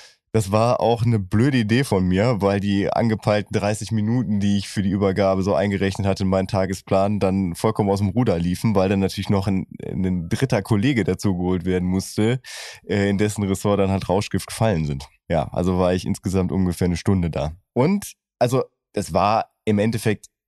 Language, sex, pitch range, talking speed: German, male, 95-120 Hz, 190 wpm